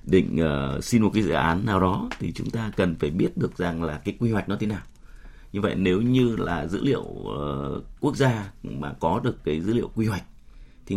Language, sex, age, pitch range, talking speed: Vietnamese, male, 30-49, 70-105 Hz, 235 wpm